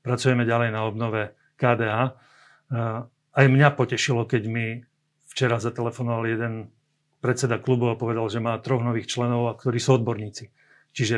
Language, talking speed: Slovak, 145 wpm